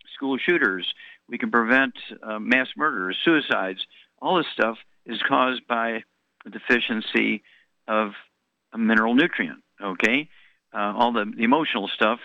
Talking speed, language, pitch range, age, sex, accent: 135 wpm, English, 105-130 Hz, 50-69, male, American